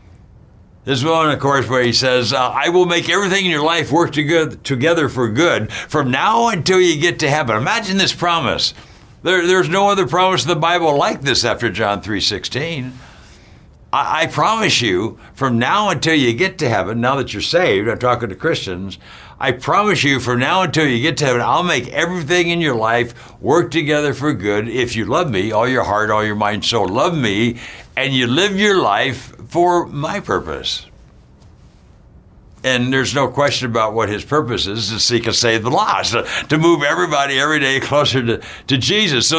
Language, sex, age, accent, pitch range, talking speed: English, male, 60-79, American, 120-165 Hz, 200 wpm